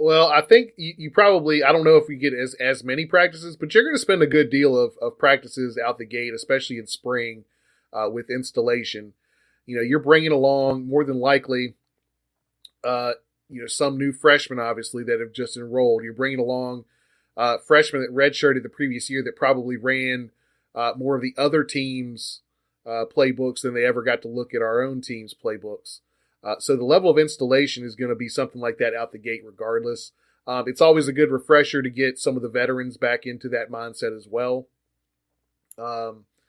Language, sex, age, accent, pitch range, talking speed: English, male, 30-49, American, 120-140 Hz, 200 wpm